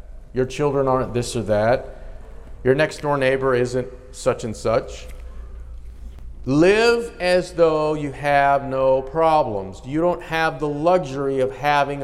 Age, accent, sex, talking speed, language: 50-69, American, male, 140 wpm, English